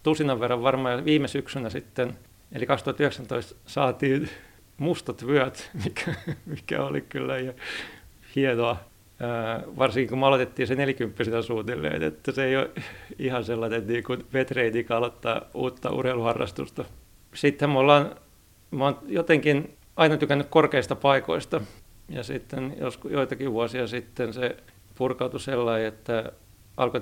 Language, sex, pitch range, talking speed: Finnish, male, 115-140 Hz, 130 wpm